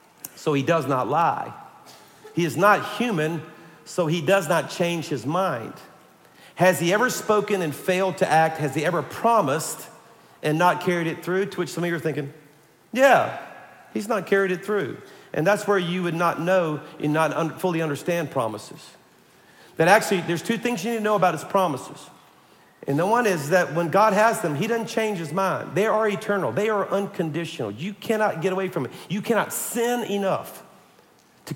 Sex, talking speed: male, 190 wpm